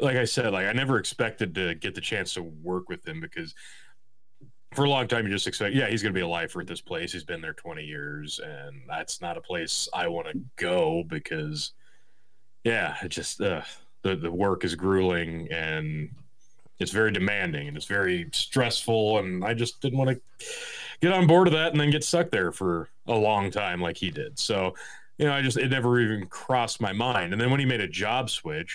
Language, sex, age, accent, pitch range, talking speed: English, male, 30-49, American, 95-130 Hz, 225 wpm